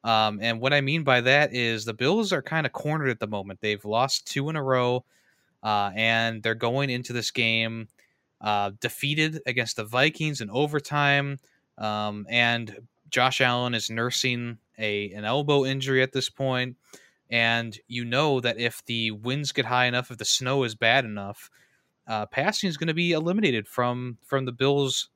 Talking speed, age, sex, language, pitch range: 180 wpm, 20-39, male, English, 115-140 Hz